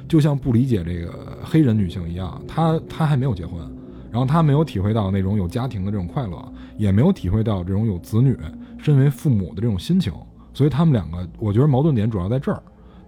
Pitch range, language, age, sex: 100-150 Hz, Chinese, 20-39, male